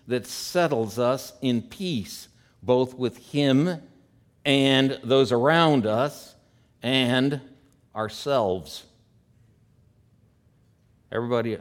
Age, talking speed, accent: 60-79, 80 wpm, American